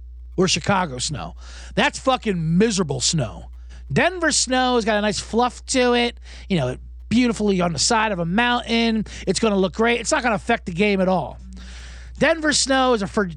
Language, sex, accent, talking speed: English, male, American, 200 wpm